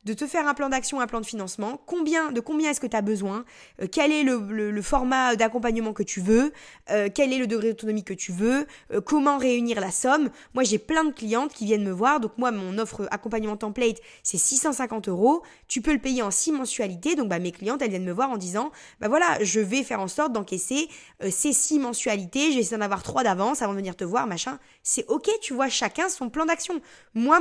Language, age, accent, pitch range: French, 20-39, French, 215-275 Hz